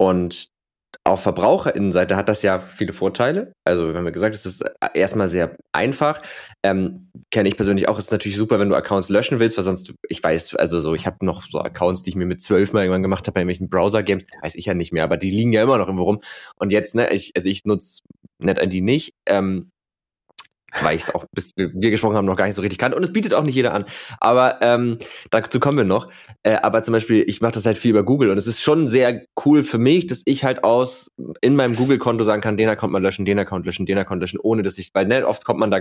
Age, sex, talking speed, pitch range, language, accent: 20-39, male, 260 wpm, 95-120 Hz, German, German